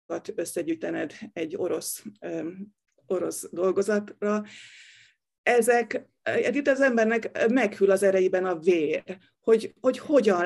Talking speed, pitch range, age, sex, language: 110 wpm, 185-245 Hz, 30-49, female, Hungarian